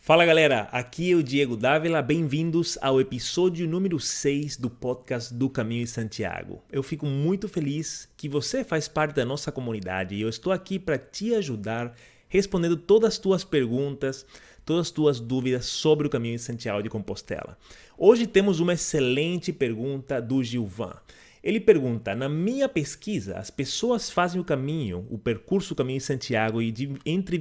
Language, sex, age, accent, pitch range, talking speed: Portuguese, male, 30-49, Brazilian, 120-160 Hz, 165 wpm